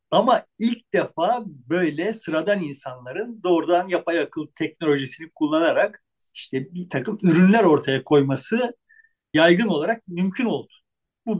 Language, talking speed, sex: Turkish, 115 wpm, male